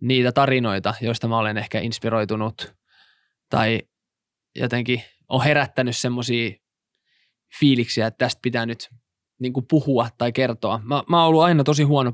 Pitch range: 115-135 Hz